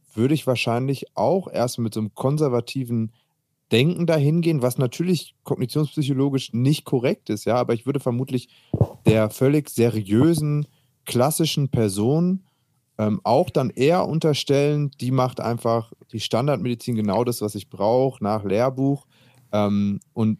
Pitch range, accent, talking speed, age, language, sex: 105-135 Hz, German, 140 wpm, 30-49, German, male